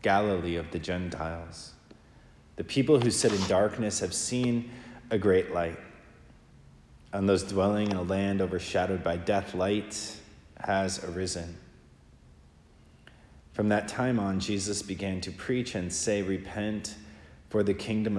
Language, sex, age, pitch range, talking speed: English, male, 30-49, 85-105 Hz, 135 wpm